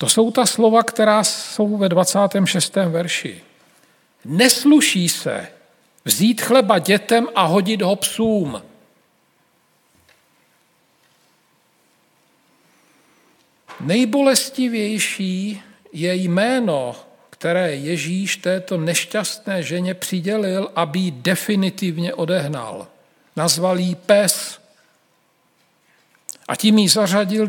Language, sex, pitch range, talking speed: Slovak, male, 165-215 Hz, 85 wpm